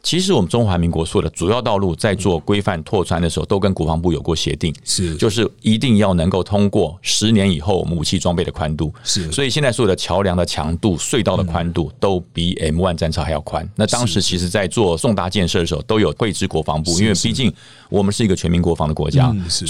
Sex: male